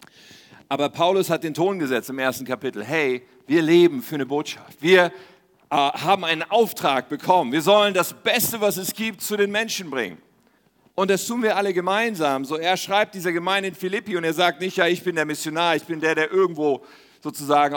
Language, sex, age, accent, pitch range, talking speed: German, male, 50-69, German, 135-190 Hz, 205 wpm